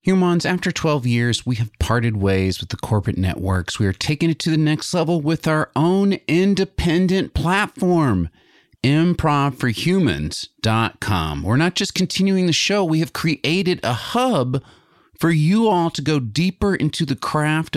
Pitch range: 110-165 Hz